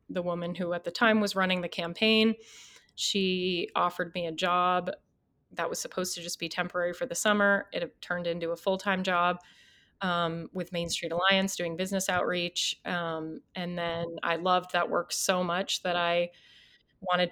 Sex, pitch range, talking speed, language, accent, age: female, 170-190 Hz, 175 wpm, English, American, 30-49